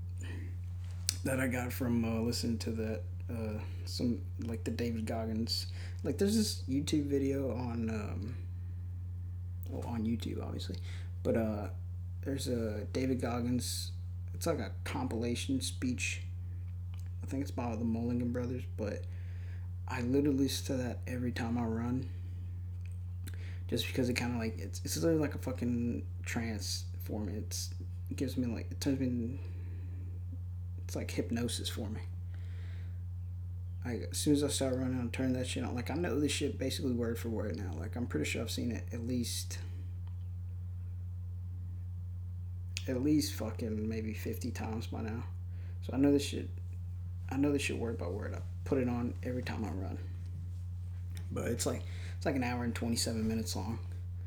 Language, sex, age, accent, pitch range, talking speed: English, male, 20-39, American, 90-110 Hz, 165 wpm